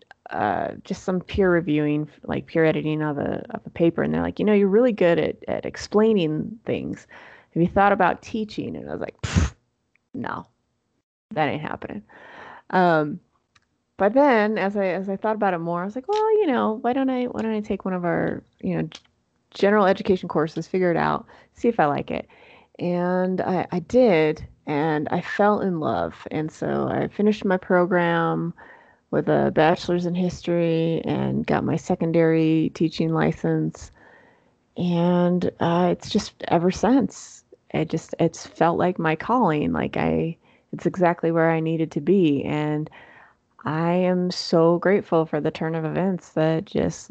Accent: American